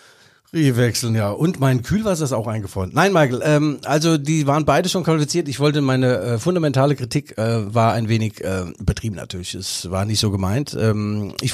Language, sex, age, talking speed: German, male, 50-69, 200 wpm